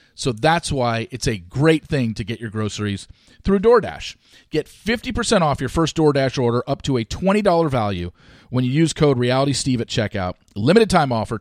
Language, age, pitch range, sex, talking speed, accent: English, 40-59, 110-160 Hz, male, 185 wpm, American